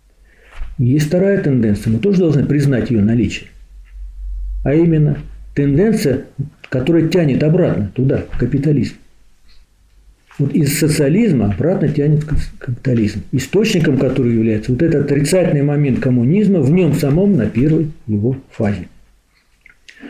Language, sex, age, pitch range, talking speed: Russian, male, 50-69, 120-170 Hz, 115 wpm